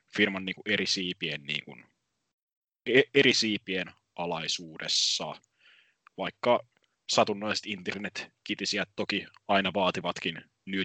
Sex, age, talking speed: male, 20-39, 70 wpm